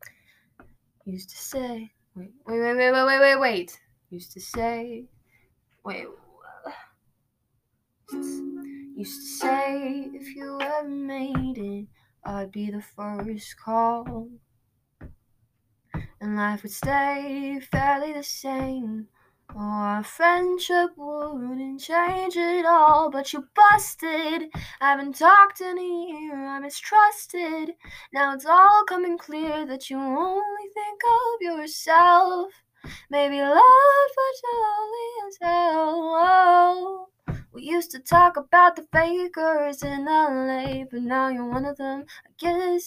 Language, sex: English, female